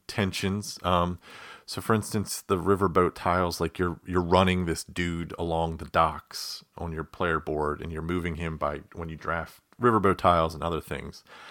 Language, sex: English, male